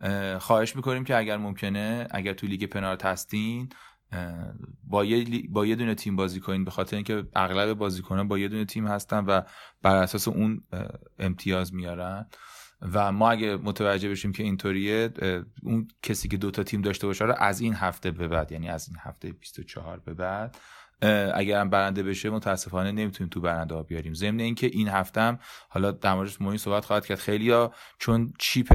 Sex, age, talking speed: male, 30-49, 175 wpm